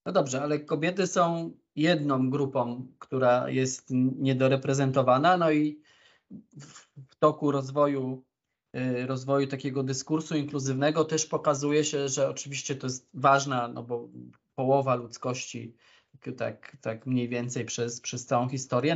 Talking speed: 125 wpm